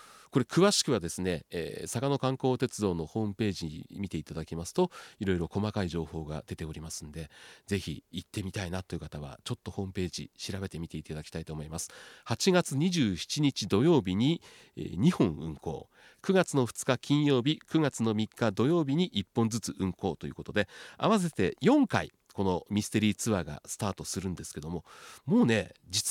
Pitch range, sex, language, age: 90-145 Hz, male, Japanese, 40-59